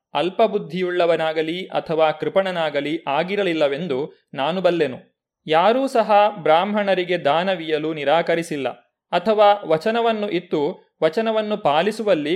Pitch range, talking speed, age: 155-205 Hz, 80 wpm, 30-49